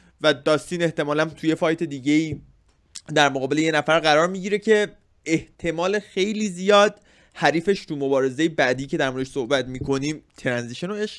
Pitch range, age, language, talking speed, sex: 140-175 Hz, 20-39, Persian, 145 wpm, male